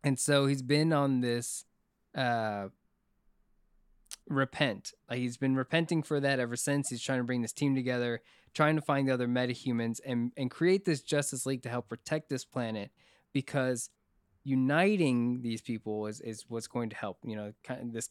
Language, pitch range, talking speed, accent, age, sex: English, 120-145 Hz, 170 wpm, American, 20-39, male